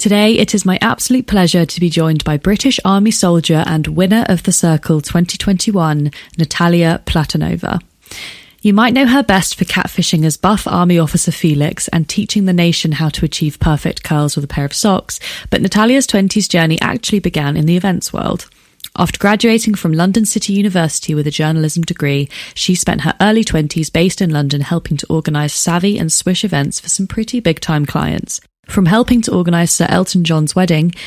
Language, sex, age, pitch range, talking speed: English, female, 20-39, 155-200 Hz, 185 wpm